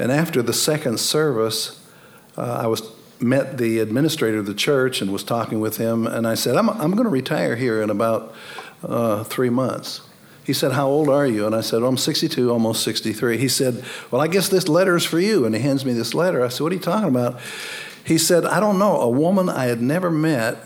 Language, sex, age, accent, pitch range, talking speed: English, male, 60-79, American, 115-150 Hz, 235 wpm